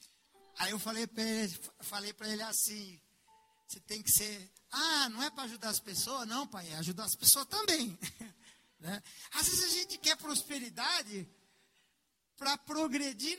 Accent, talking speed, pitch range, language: Brazilian, 150 wpm, 205-275 Hz, Portuguese